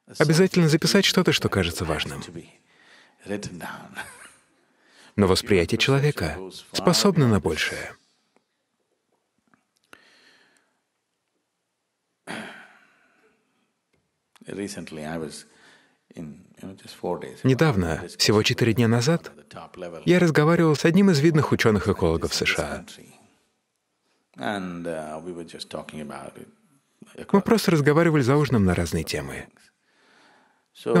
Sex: male